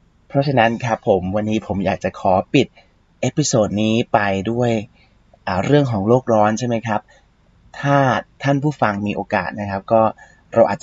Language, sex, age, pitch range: Thai, male, 30-49, 110-145 Hz